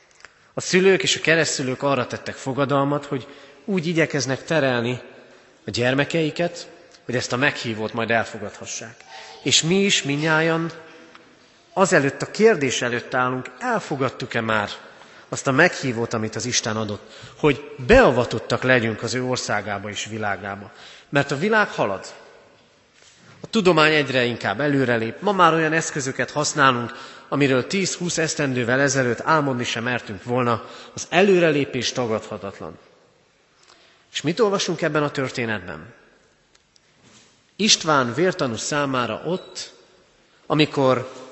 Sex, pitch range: male, 120-160 Hz